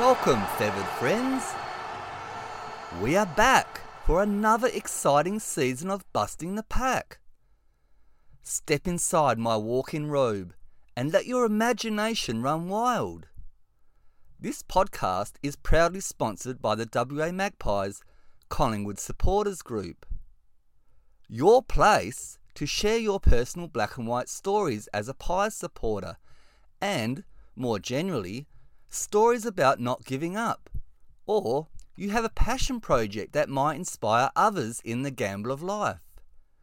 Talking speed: 120 wpm